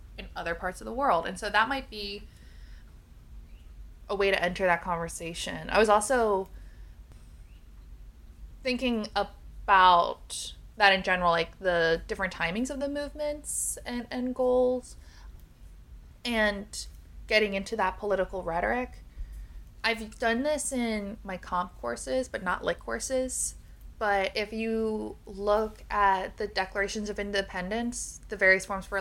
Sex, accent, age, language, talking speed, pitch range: female, American, 20-39, English, 135 wpm, 170-215 Hz